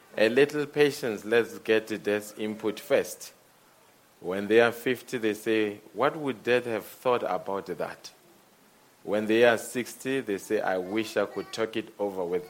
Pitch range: 95-115 Hz